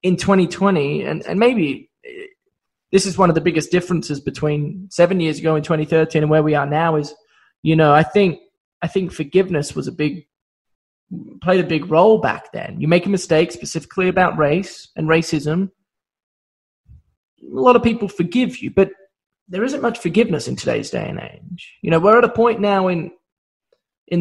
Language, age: English, 20-39